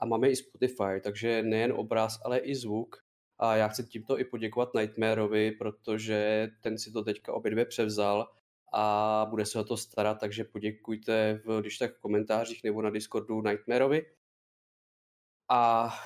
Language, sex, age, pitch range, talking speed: Czech, male, 20-39, 110-145 Hz, 160 wpm